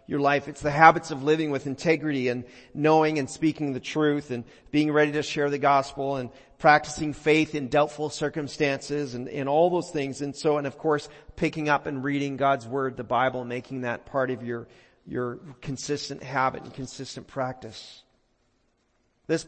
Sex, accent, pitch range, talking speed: male, American, 135-170 Hz, 180 wpm